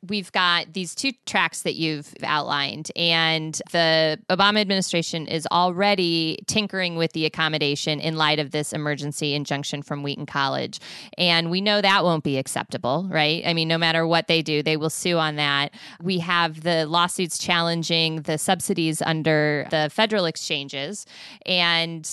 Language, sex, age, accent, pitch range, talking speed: English, female, 20-39, American, 155-180 Hz, 160 wpm